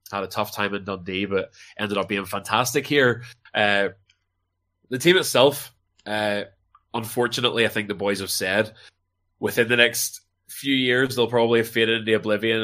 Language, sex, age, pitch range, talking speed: English, male, 20-39, 95-110 Hz, 165 wpm